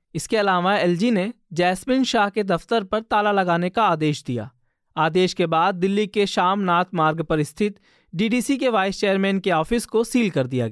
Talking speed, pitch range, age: 185 wpm, 170-215 Hz, 20-39